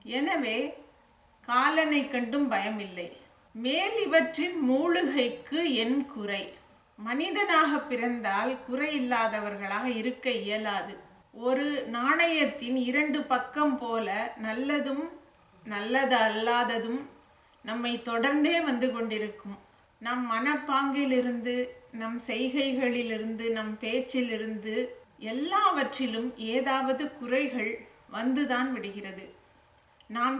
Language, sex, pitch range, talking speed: English, female, 230-280 Hz, 75 wpm